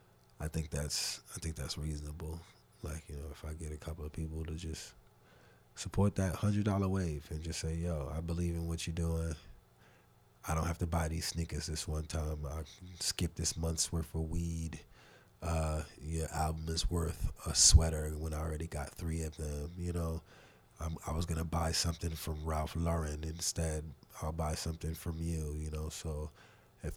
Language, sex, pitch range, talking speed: English, male, 80-95 Hz, 190 wpm